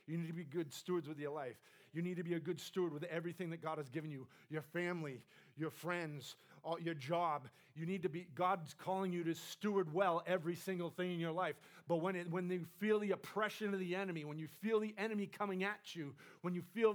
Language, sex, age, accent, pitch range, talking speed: English, male, 40-59, American, 145-185 Hz, 235 wpm